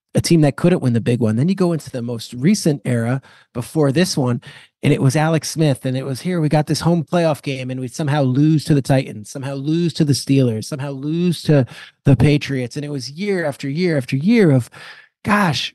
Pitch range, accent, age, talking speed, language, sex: 130-165 Hz, American, 30-49, 230 wpm, English, male